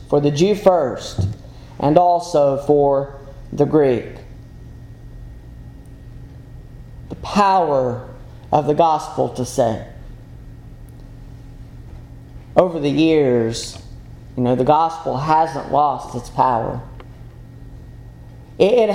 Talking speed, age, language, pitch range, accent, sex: 90 wpm, 40-59, English, 125-165 Hz, American, male